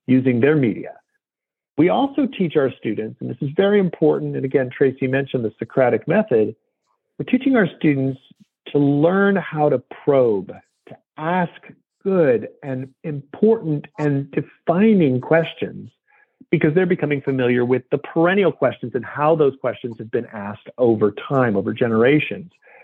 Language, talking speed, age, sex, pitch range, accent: English, 145 wpm, 50-69, male, 125-175 Hz, American